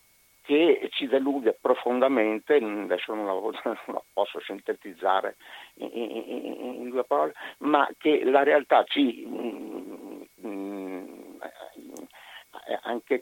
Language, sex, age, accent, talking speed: Italian, male, 50-69, native, 100 wpm